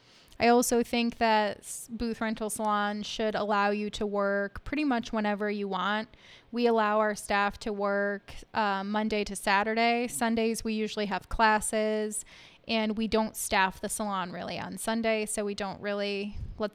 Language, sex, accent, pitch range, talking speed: English, female, American, 200-220 Hz, 165 wpm